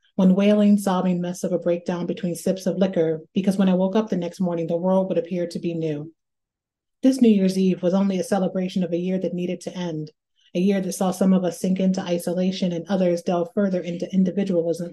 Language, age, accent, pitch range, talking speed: English, 30-49, American, 175-195 Hz, 230 wpm